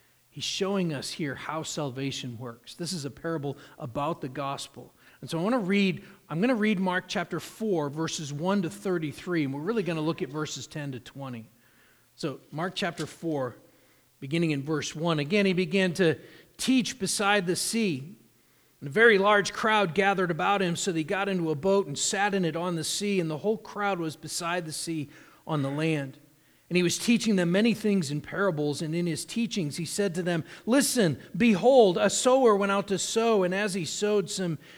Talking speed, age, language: 205 wpm, 40-59, English